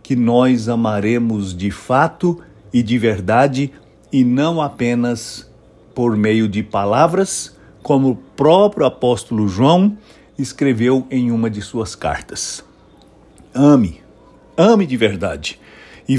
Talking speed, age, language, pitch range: 115 wpm, 60-79, English, 110-145 Hz